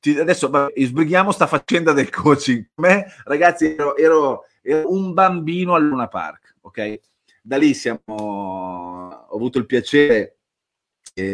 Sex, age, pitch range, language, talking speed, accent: male, 30-49, 105-145 Hz, Italian, 130 wpm, native